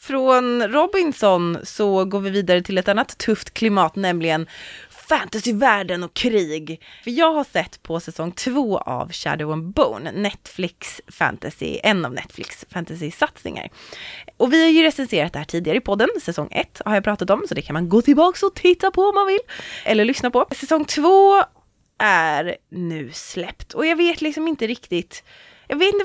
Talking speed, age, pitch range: 175 wpm, 20-39, 165-270 Hz